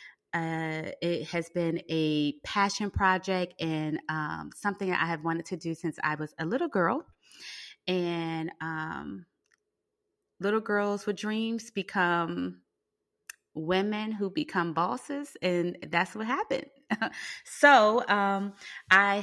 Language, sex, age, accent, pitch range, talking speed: English, female, 20-39, American, 160-190 Hz, 125 wpm